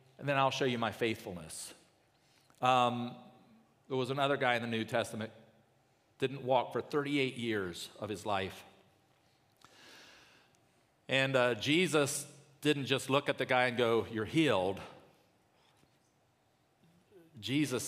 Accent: American